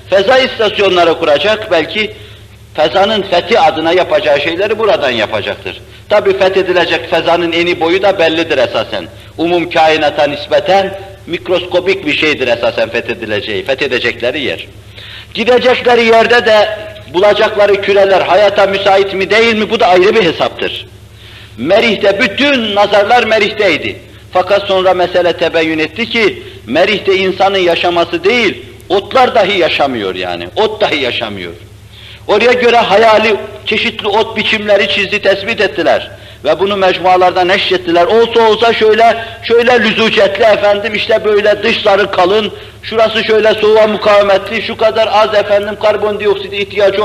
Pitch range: 170-215 Hz